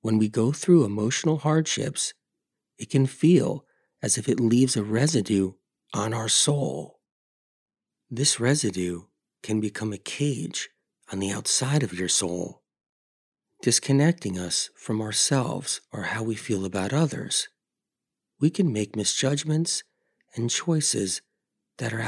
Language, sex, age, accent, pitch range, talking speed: English, male, 40-59, American, 105-140 Hz, 130 wpm